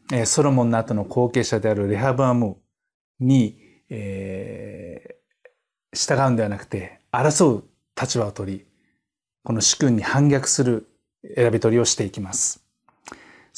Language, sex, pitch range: Japanese, male, 110-135 Hz